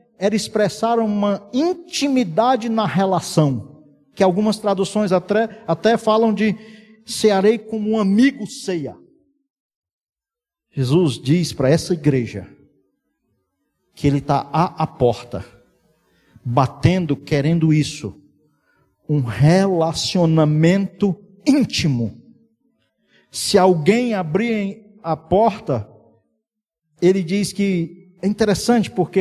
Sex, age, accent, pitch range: male, 50-69, Brazilian, 150-215 Hz